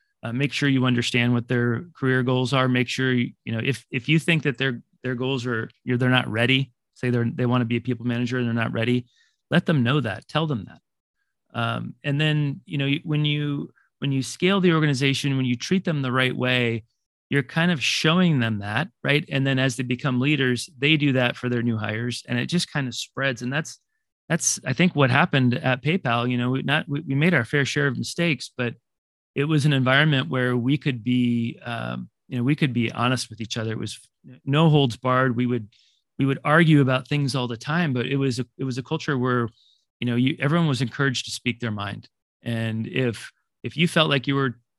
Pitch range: 120-145 Hz